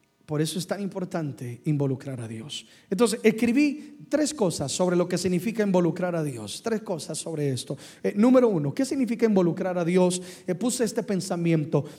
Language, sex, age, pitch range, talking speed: Spanish, male, 30-49, 170-220 Hz, 175 wpm